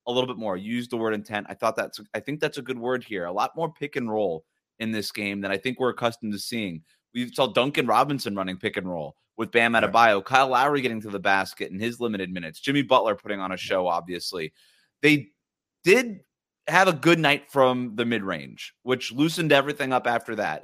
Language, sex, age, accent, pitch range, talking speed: English, male, 30-49, American, 110-145 Hz, 235 wpm